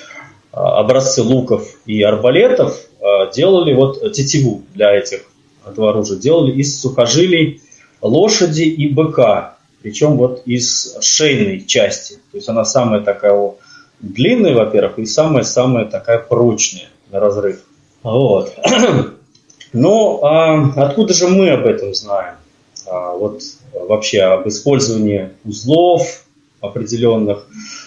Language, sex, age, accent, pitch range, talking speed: Russian, male, 20-39, native, 110-150 Hz, 110 wpm